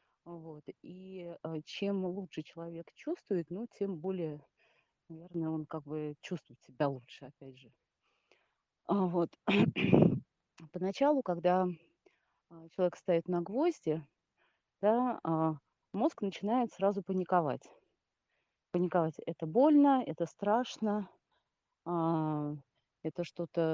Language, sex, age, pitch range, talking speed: Russian, female, 30-49, 165-210 Hz, 85 wpm